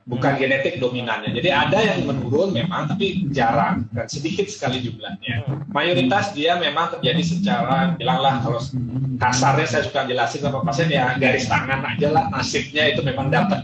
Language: Indonesian